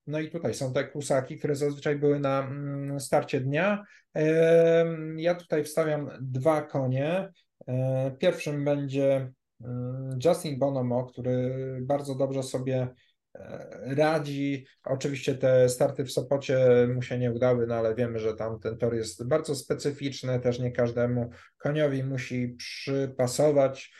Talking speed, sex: 130 wpm, male